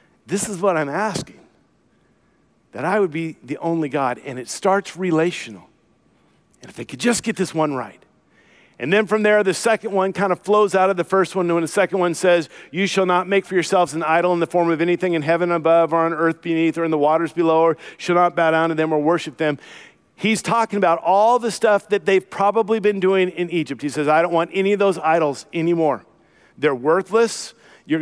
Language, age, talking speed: English, 50-69, 230 wpm